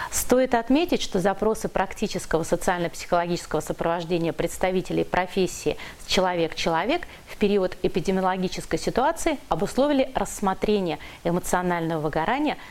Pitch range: 170-220 Hz